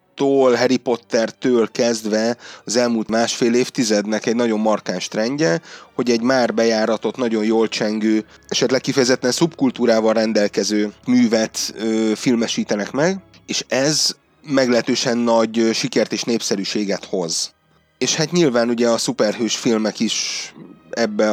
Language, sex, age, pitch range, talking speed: Hungarian, male, 30-49, 110-125 Hz, 120 wpm